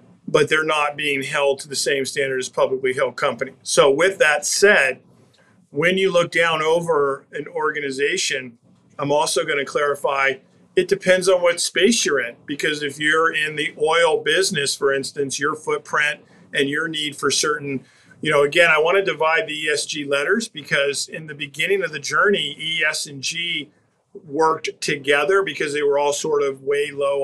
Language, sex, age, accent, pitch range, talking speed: English, male, 50-69, American, 145-185 Hz, 180 wpm